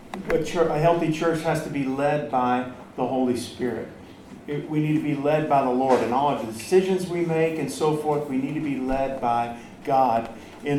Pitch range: 130-155 Hz